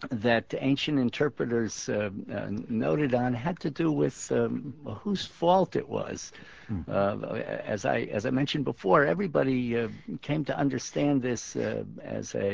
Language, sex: English, male